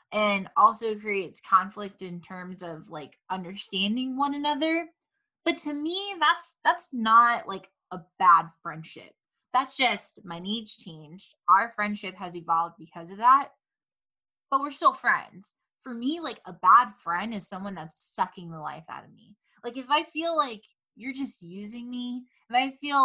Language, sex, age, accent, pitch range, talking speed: English, female, 10-29, American, 185-255 Hz, 165 wpm